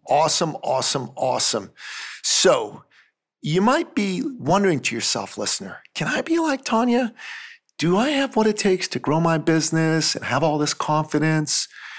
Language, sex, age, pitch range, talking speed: English, male, 40-59, 135-175 Hz, 155 wpm